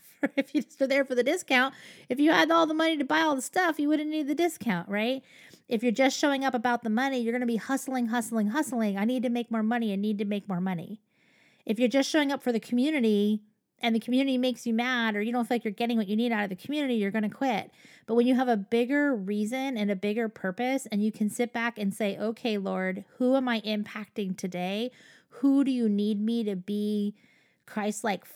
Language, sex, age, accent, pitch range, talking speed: English, female, 30-49, American, 210-275 Hz, 245 wpm